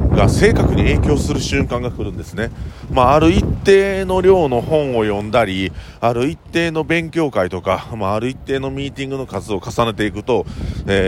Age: 40-59